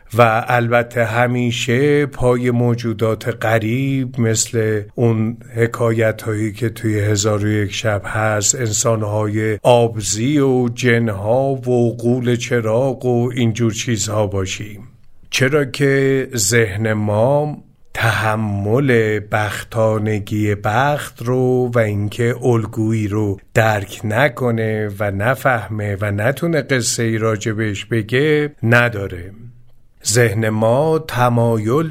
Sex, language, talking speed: male, Persian, 100 wpm